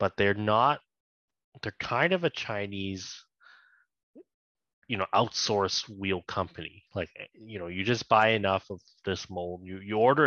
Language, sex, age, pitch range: English, male, 20-39, 90-110 Hz